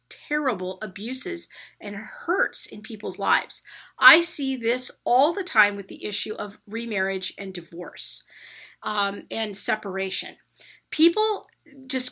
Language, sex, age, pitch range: English, female, 40-59, 200-285 Hz